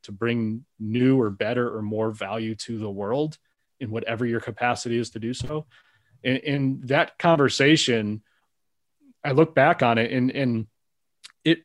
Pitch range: 115-135 Hz